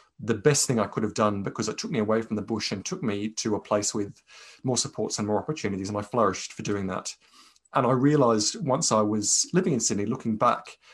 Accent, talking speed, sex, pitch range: British, 240 wpm, male, 105-120 Hz